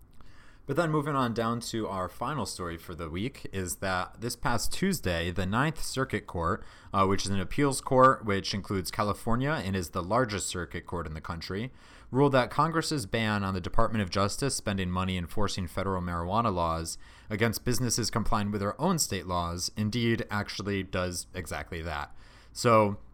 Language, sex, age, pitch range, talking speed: English, male, 30-49, 90-115 Hz, 175 wpm